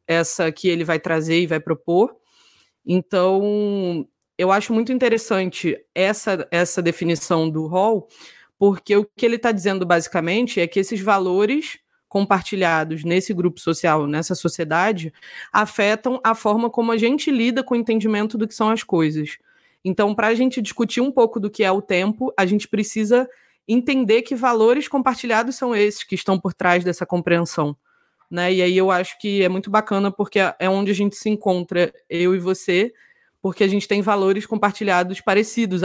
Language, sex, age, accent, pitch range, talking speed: Portuguese, female, 20-39, Brazilian, 180-220 Hz, 170 wpm